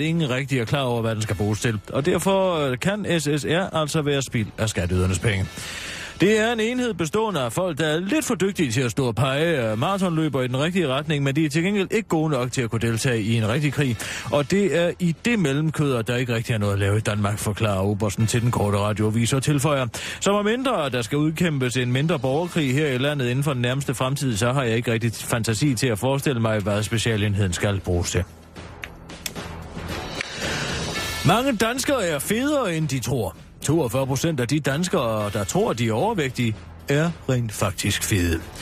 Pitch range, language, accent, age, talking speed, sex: 110-160 Hz, Danish, native, 30-49, 210 wpm, male